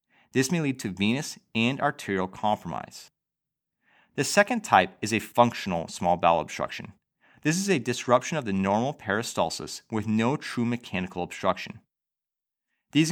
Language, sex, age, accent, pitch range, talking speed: English, male, 30-49, American, 100-145 Hz, 140 wpm